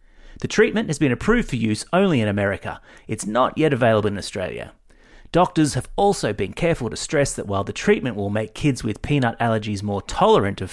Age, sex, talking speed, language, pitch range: 30-49, male, 200 wpm, English, 105-160 Hz